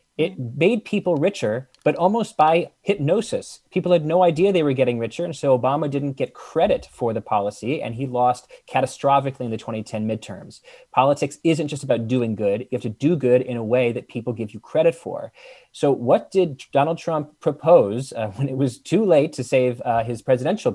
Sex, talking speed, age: male, 200 wpm, 30-49